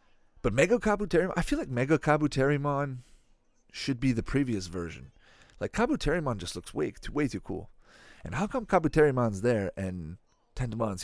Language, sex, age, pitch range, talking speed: English, male, 40-59, 105-140 Hz, 160 wpm